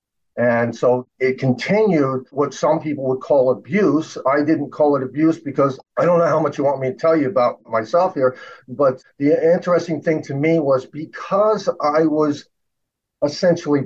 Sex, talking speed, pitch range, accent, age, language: male, 180 wpm, 130-170 Hz, American, 50-69, English